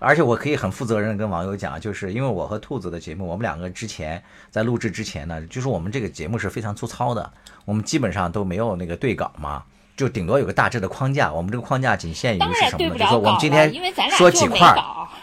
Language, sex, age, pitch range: Chinese, male, 50-69, 85-120 Hz